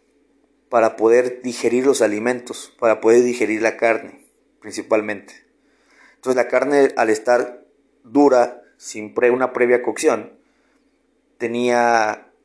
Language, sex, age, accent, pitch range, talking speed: Spanish, male, 30-49, Mexican, 110-135 Hz, 110 wpm